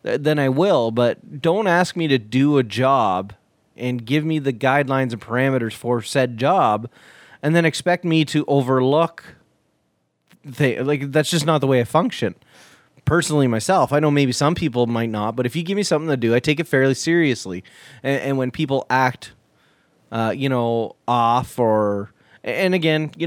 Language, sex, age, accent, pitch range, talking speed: English, male, 30-49, American, 120-150 Hz, 185 wpm